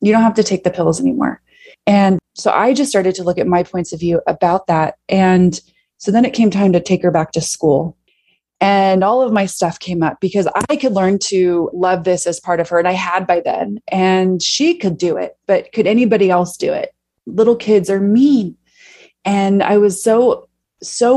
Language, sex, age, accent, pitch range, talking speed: English, female, 20-39, American, 180-230 Hz, 220 wpm